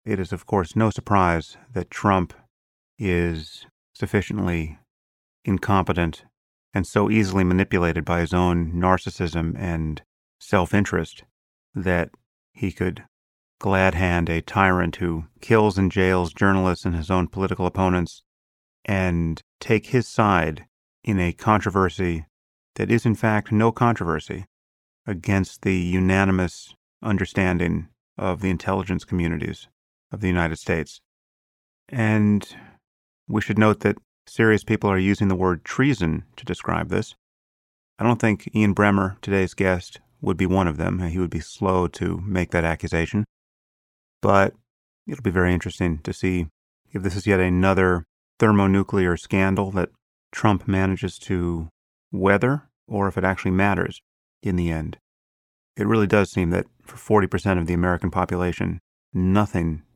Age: 30-49